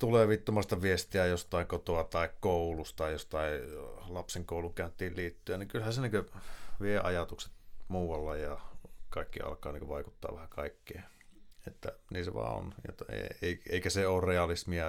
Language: Finnish